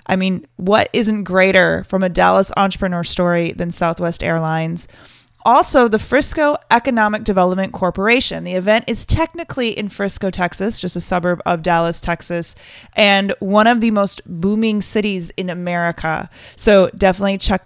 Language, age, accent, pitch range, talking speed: English, 20-39, American, 175-215 Hz, 150 wpm